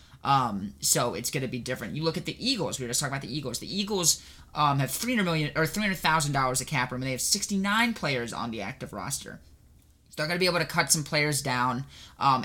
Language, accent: English, American